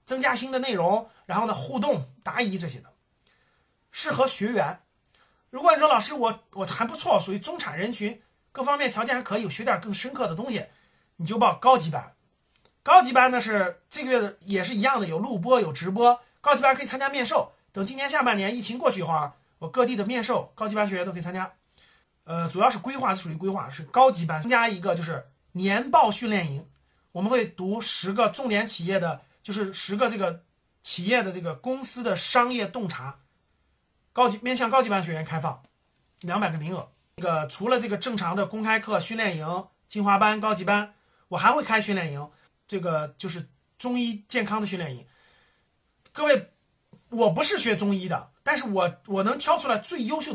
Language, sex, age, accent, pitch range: Chinese, male, 30-49, native, 180-245 Hz